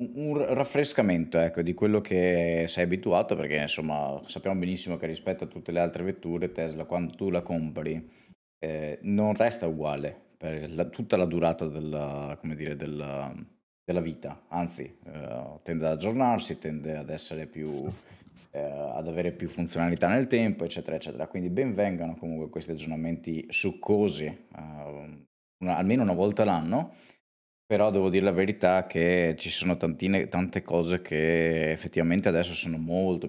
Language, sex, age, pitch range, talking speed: Italian, male, 20-39, 80-95 Hz, 155 wpm